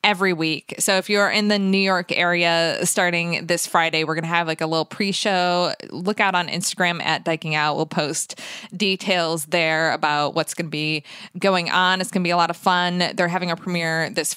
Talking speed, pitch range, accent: 215 wpm, 165-205 Hz, American